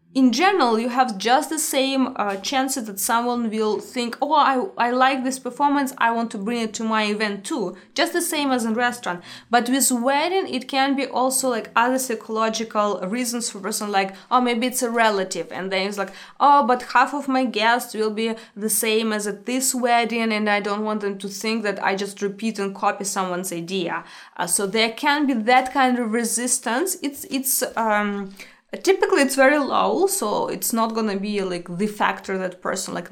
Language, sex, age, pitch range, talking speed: English, female, 20-39, 205-255 Hz, 210 wpm